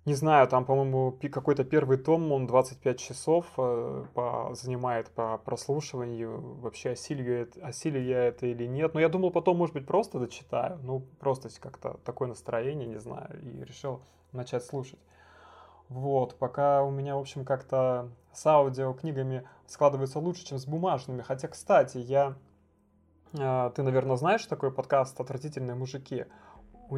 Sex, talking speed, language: male, 140 wpm, Russian